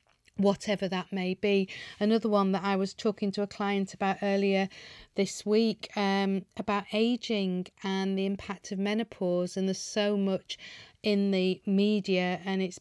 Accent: British